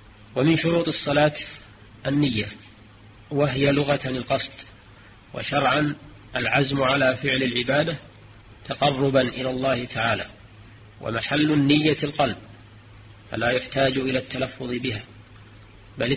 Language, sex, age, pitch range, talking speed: Arabic, male, 40-59, 110-140 Hz, 95 wpm